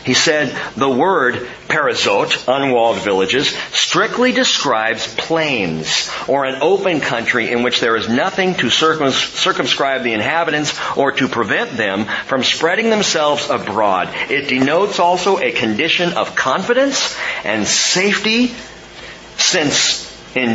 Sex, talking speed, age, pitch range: male, 125 wpm, 40-59, 120-180 Hz